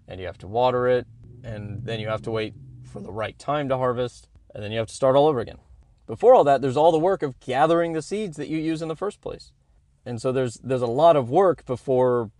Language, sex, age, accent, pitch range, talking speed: English, male, 20-39, American, 100-130 Hz, 260 wpm